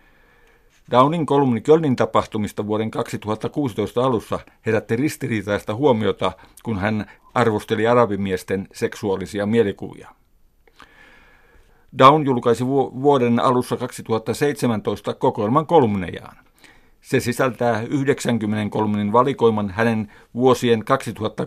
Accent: native